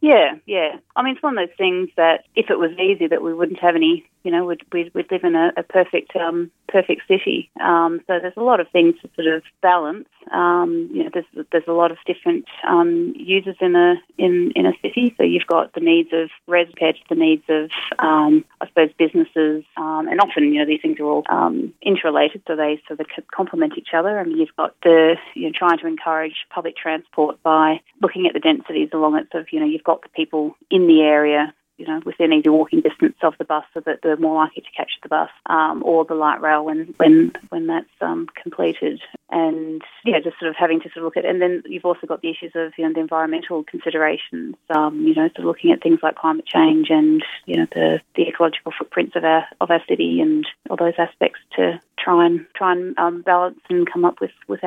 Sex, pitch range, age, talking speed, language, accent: female, 160-200 Hz, 30-49, 240 wpm, English, Australian